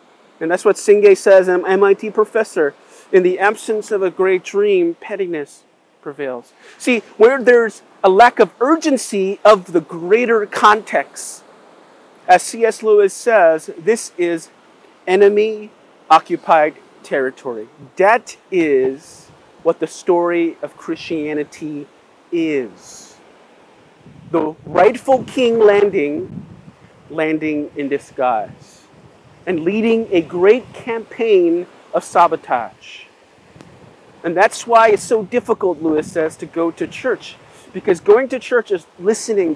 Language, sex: English, male